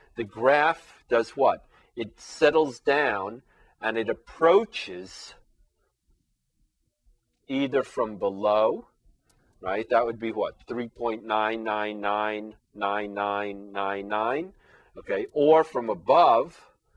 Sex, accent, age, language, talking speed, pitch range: male, American, 50-69, English, 110 wpm, 105-140 Hz